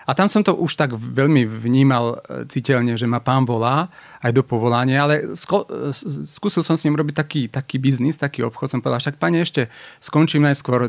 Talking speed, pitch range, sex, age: 195 wpm, 120-145 Hz, male, 40-59